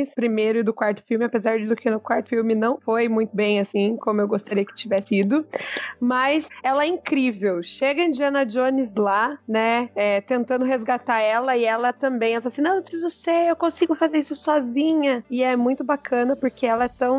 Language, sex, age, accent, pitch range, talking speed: Portuguese, female, 20-39, Brazilian, 215-260 Hz, 205 wpm